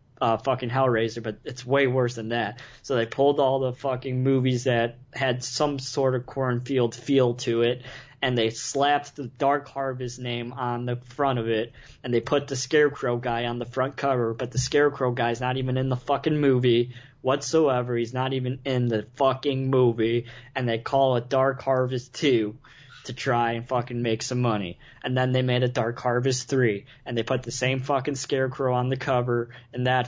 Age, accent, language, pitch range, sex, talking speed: 20-39, American, English, 120-135 Hz, male, 200 wpm